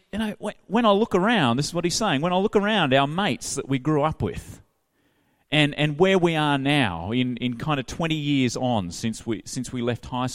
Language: English